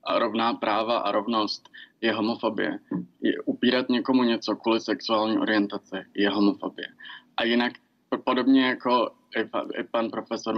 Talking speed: 130 wpm